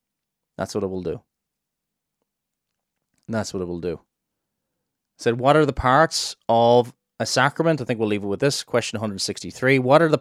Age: 30-49